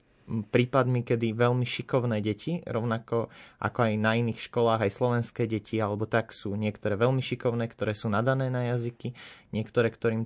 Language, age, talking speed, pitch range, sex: Slovak, 20-39, 160 wpm, 110-125 Hz, male